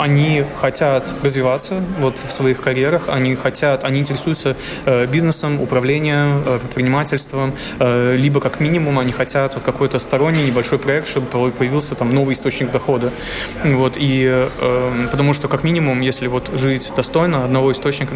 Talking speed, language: 125 wpm, Russian